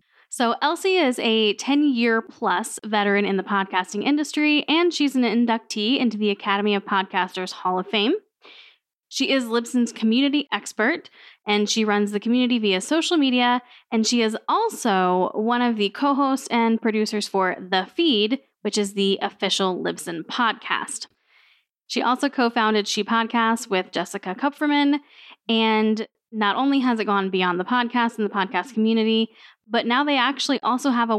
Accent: American